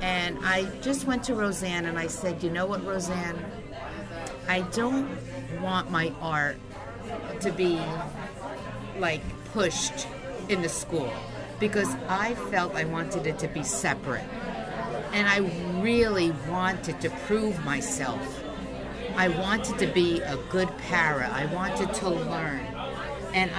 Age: 50-69